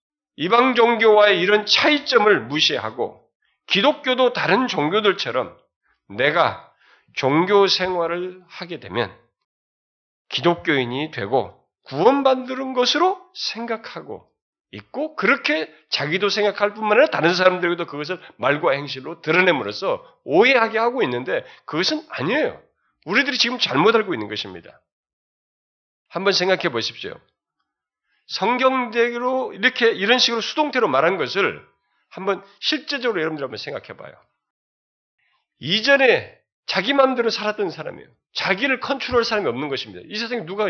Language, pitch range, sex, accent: Korean, 165-245 Hz, male, native